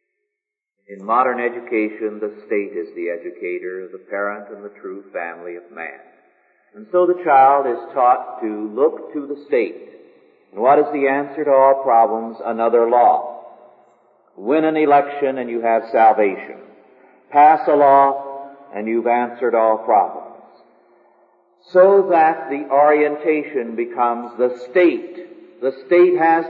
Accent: American